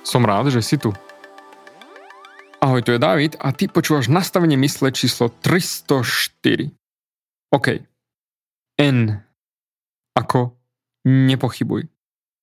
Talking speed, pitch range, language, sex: 95 wpm, 120-155 Hz, Slovak, male